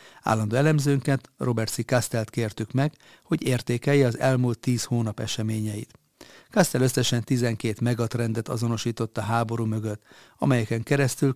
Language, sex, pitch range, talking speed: Hungarian, male, 115-130 Hz, 120 wpm